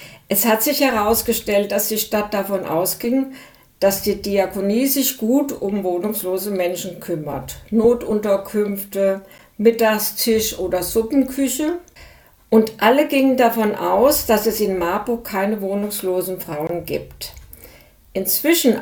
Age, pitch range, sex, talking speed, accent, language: 50-69, 190-235 Hz, female, 115 wpm, German, German